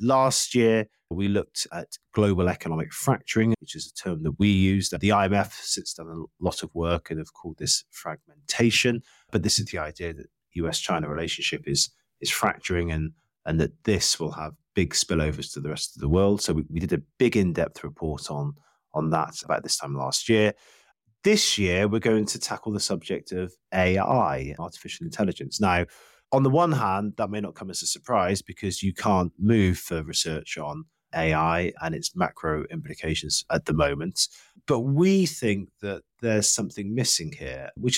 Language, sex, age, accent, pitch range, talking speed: English, male, 20-39, British, 85-115 Hz, 185 wpm